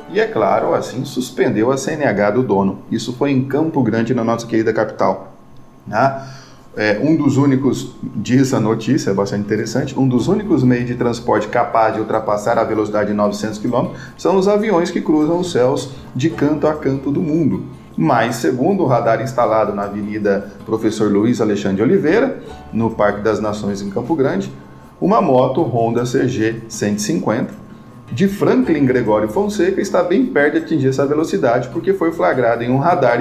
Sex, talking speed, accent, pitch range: male, 170 wpm, Brazilian, 105-130 Hz